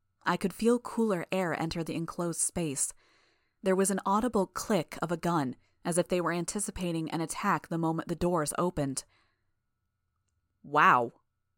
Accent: American